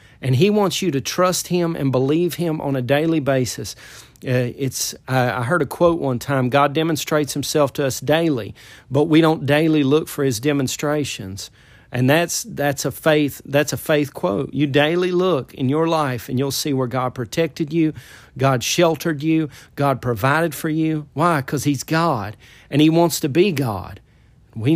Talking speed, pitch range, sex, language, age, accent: 185 wpm, 125-170 Hz, male, English, 40-59, American